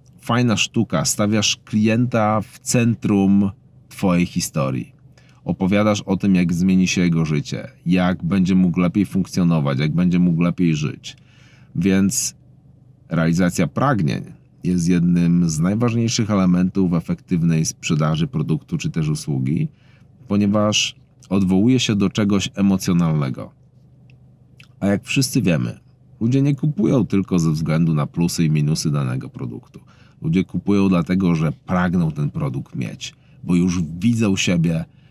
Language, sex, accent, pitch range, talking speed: Polish, male, native, 85-130 Hz, 125 wpm